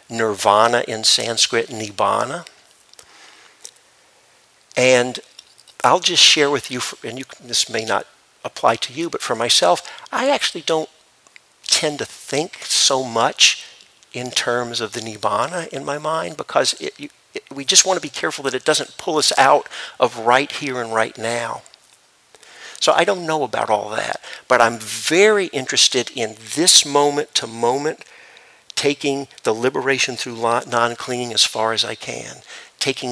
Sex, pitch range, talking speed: male, 115-155 Hz, 145 wpm